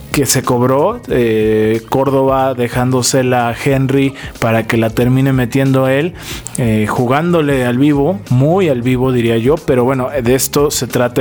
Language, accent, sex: Spanish, Argentinian, male